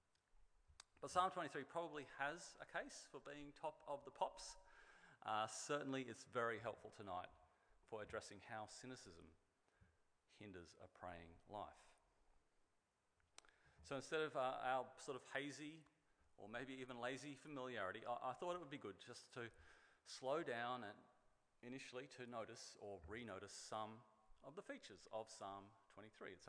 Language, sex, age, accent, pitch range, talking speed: English, male, 40-59, Australian, 105-135 Hz, 145 wpm